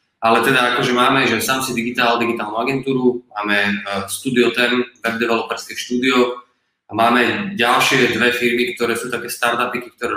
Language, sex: Slovak, male